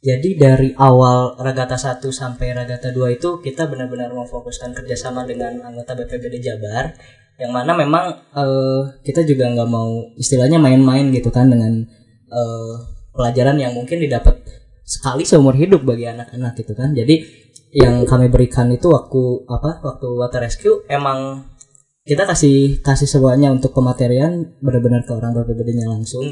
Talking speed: 145 wpm